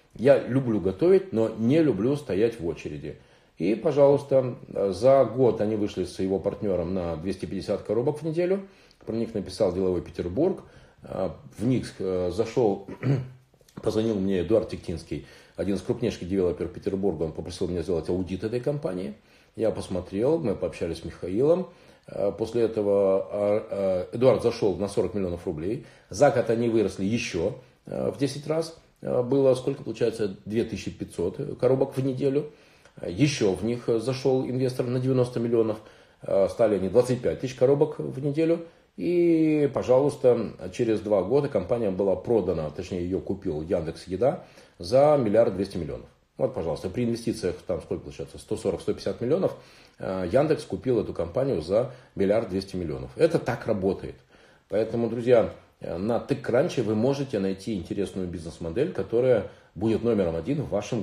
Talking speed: 140 wpm